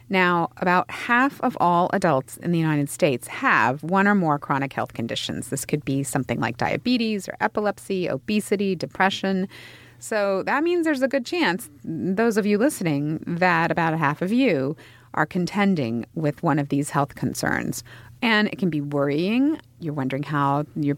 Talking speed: 170 wpm